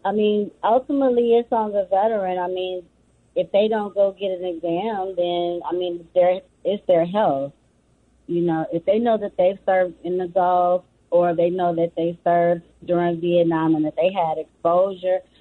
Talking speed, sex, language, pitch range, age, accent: 180 wpm, female, English, 165-195 Hz, 20-39, American